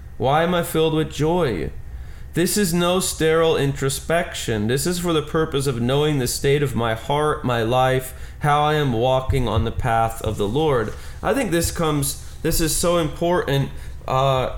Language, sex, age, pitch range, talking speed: English, male, 20-39, 115-145 Hz, 180 wpm